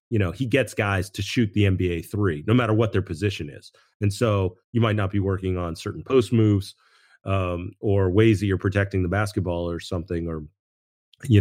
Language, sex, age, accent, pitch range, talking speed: English, male, 30-49, American, 90-115 Hz, 205 wpm